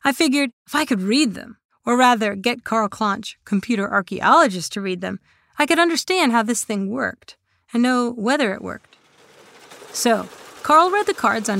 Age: 30-49